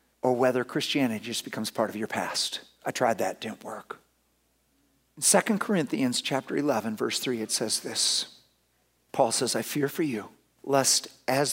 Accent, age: American, 50-69